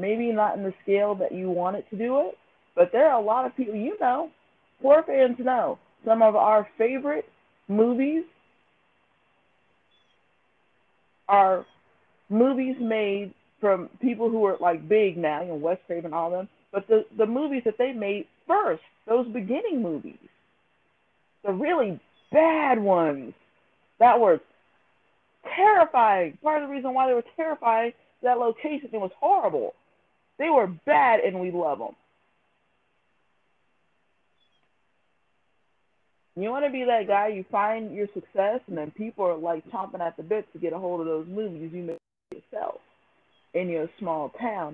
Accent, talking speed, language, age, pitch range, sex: American, 155 wpm, English, 40-59, 180-255 Hz, female